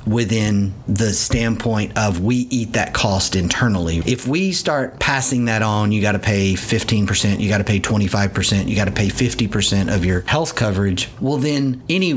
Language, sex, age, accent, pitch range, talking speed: English, male, 40-59, American, 105-125 Hz, 180 wpm